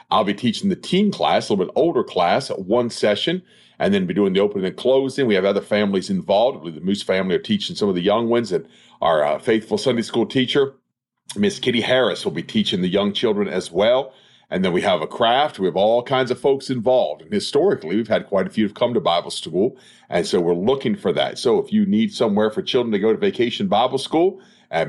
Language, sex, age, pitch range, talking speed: English, male, 40-59, 110-160 Hz, 240 wpm